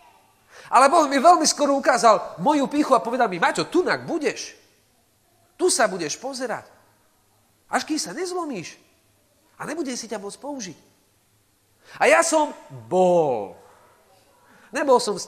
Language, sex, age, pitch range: Slovak, male, 40-59, 175-290 Hz